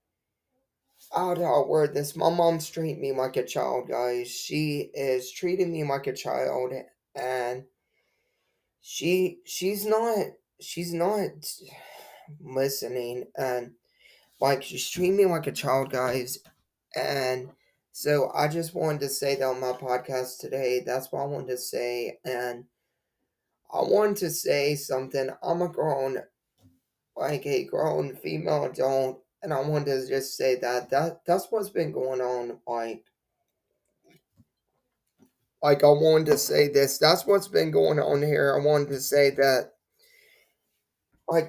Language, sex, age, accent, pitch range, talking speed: English, male, 20-39, American, 130-165 Hz, 145 wpm